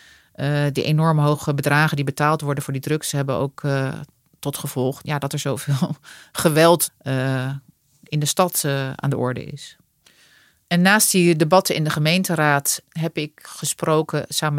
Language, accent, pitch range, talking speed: Dutch, Dutch, 140-160 Hz, 170 wpm